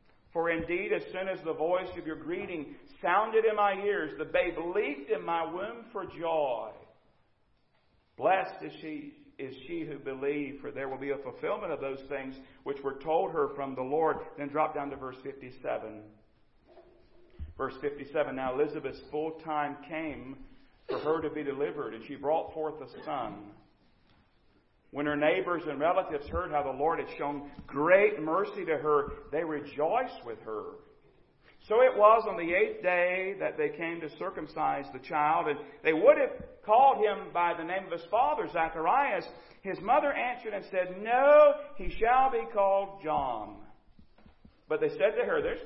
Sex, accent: male, American